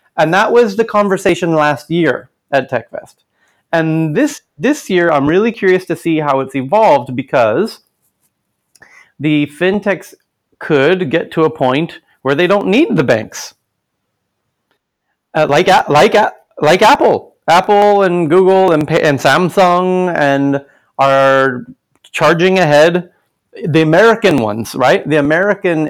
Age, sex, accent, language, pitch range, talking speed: 30-49, male, American, English, 135-180 Hz, 130 wpm